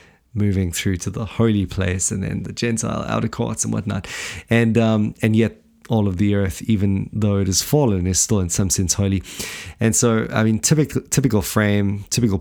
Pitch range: 100-120 Hz